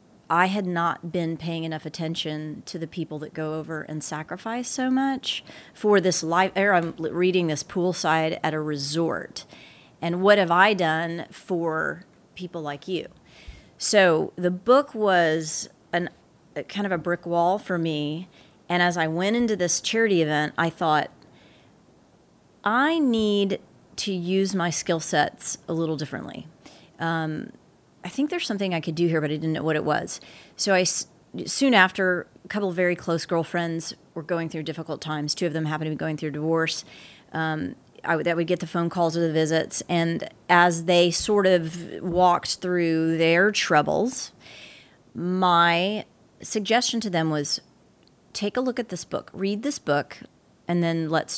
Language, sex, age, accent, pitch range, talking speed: English, female, 30-49, American, 160-185 Hz, 170 wpm